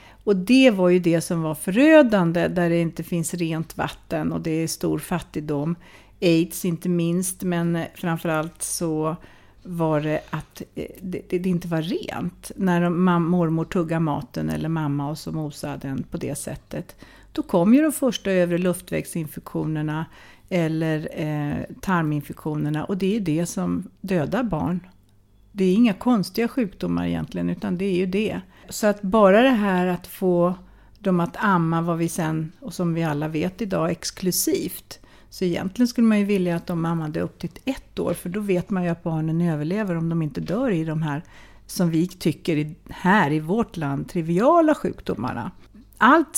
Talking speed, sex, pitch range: 170 wpm, female, 160-190 Hz